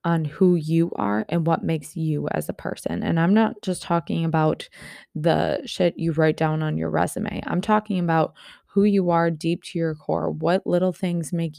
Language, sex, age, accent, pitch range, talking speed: English, female, 20-39, American, 160-185 Hz, 200 wpm